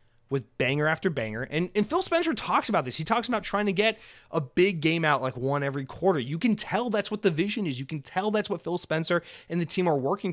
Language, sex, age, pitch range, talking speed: English, male, 30-49, 140-190 Hz, 260 wpm